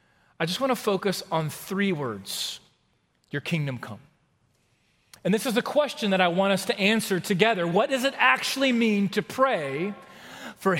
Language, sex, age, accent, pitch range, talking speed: English, male, 40-59, American, 155-225 Hz, 170 wpm